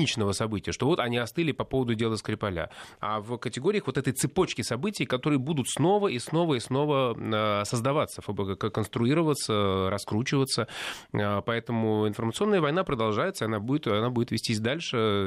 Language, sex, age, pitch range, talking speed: Russian, male, 20-39, 105-135 Hz, 140 wpm